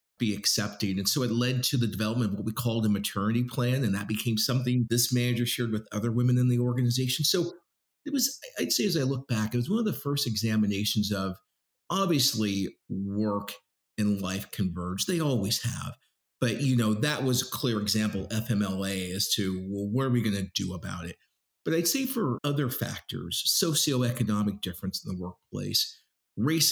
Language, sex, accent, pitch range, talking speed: English, male, American, 100-125 Hz, 195 wpm